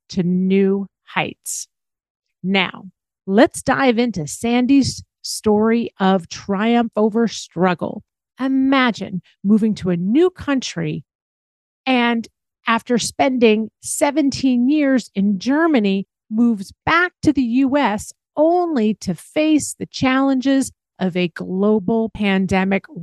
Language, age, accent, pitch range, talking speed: English, 40-59, American, 190-265 Hz, 105 wpm